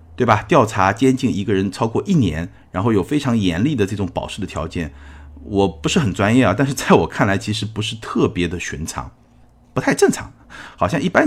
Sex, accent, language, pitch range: male, native, Chinese, 85-115 Hz